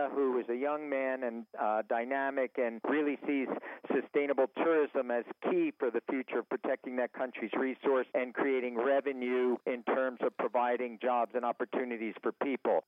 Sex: male